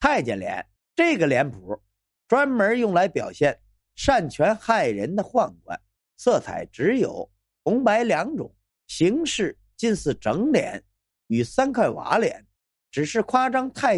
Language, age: Chinese, 50-69